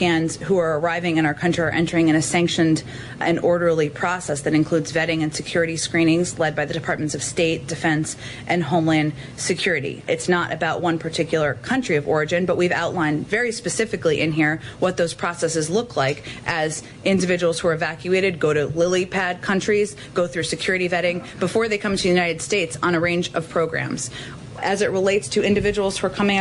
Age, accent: 30-49, American